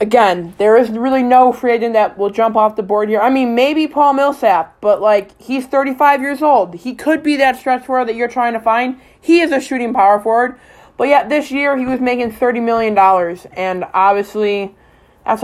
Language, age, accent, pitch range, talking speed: English, 20-39, American, 195-250 Hz, 215 wpm